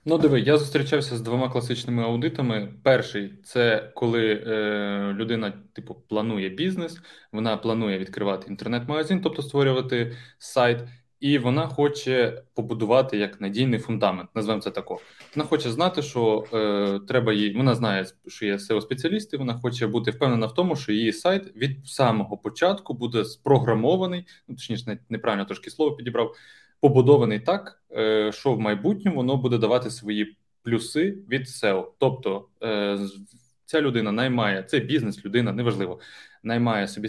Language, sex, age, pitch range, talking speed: Ukrainian, male, 20-39, 110-140 Hz, 140 wpm